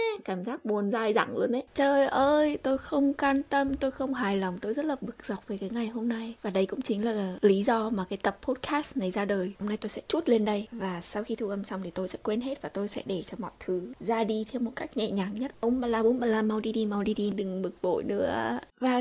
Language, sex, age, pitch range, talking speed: Vietnamese, female, 20-39, 205-255 Hz, 285 wpm